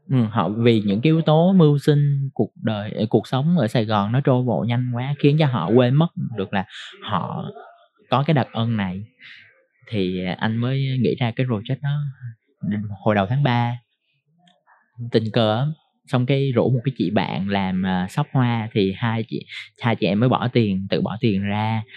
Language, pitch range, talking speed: Vietnamese, 105-135 Hz, 195 wpm